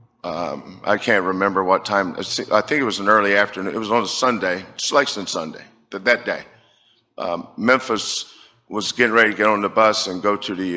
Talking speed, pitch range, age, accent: 205 wpm, 100-120 Hz, 50-69, American